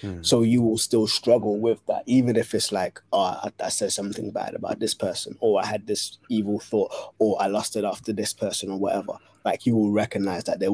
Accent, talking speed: British, 230 wpm